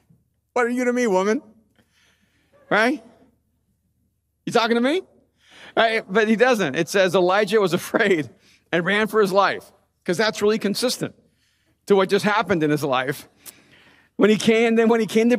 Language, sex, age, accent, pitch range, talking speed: English, male, 50-69, American, 150-220 Hz, 170 wpm